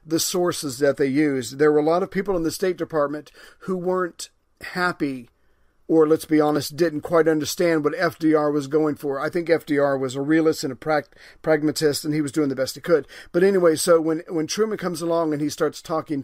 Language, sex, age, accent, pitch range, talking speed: English, male, 40-59, American, 145-165 Hz, 220 wpm